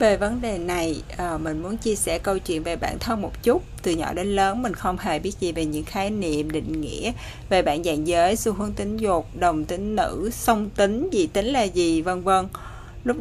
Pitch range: 165-205 Hz